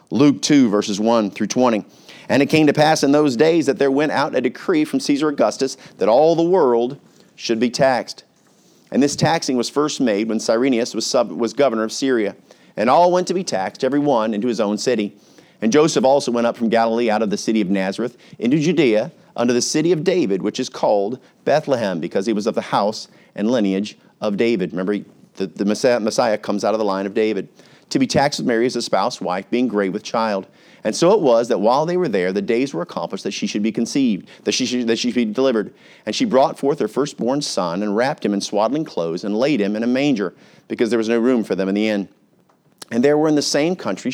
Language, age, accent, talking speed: English, 40-59, American, 240 wpm